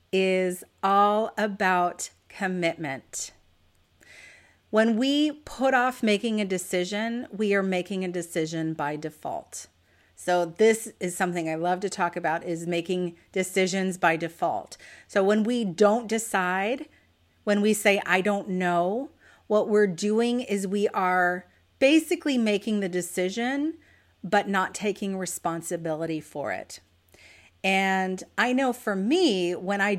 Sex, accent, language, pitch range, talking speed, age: female, American, English, 175-240 Hz, 130 wpm, 40-59